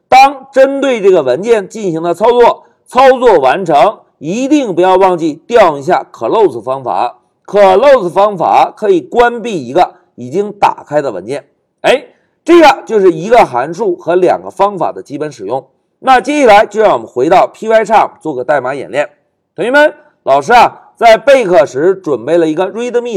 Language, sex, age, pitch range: Chinese, male, 50-69, 195-285 Hz